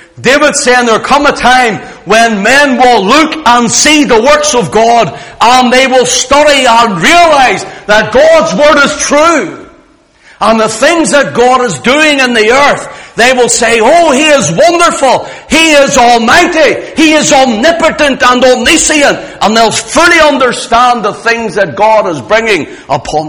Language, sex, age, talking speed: English, male, 60-79, 160 wpm